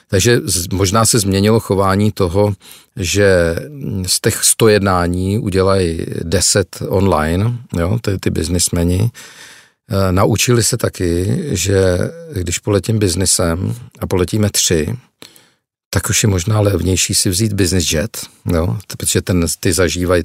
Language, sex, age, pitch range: Czech, male, 50-69, 85-105 Hz